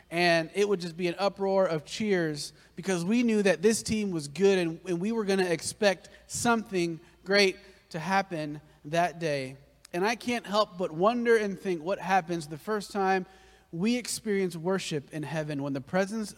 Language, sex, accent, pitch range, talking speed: English, male, American, 125-190 Hz, 185 wpm